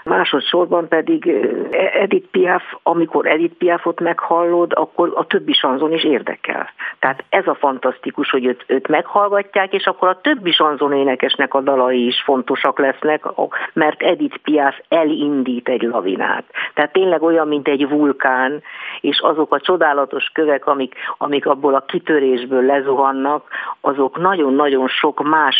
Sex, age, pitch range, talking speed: female, 50-69, 130-165 Hz, 140 wpm